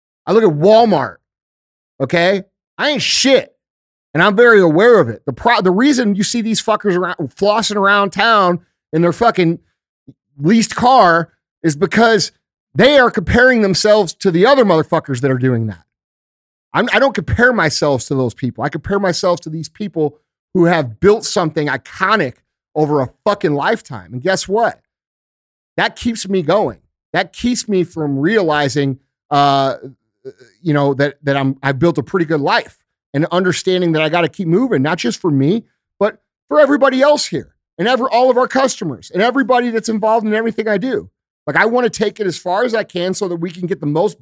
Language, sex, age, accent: English, male, 40-59, American